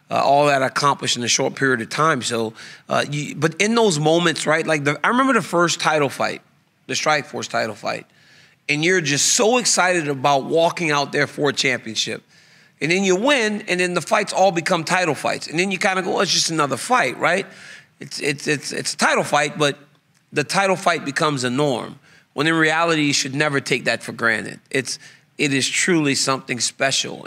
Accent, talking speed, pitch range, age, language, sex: American, 210 wpm, 135-165 Hz, 30-49, English, male